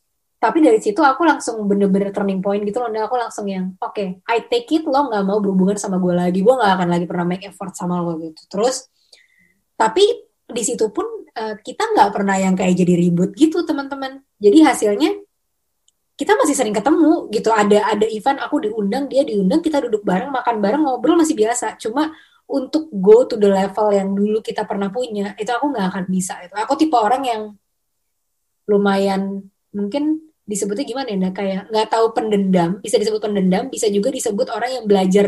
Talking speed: 190 wpm